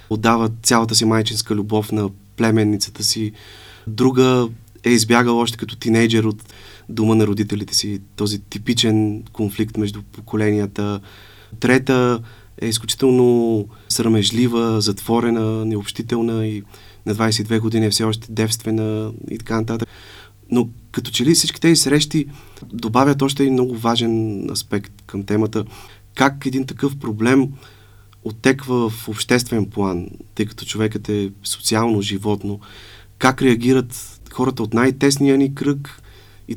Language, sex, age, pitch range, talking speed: Bulgarian, male, 30-49, 105-120 Hz, 125 wpm